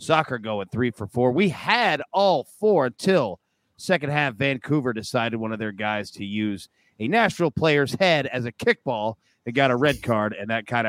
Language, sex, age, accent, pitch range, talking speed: English, male, 30-49, American, 120-170 Hz, 195 wpm